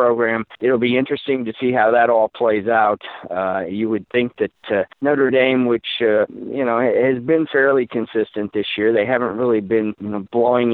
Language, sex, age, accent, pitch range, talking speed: English, male, 50-69, American, 105-125 Hz, 200 wpm